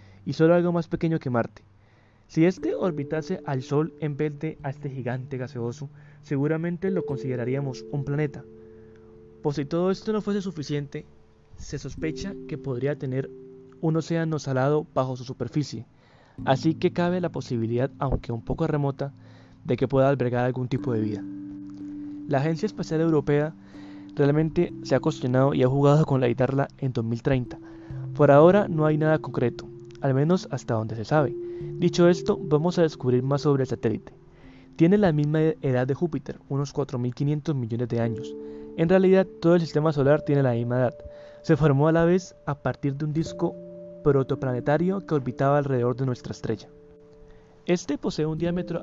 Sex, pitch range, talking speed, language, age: male, 125-160 Hz, 170 wpm, Spanish, 20-39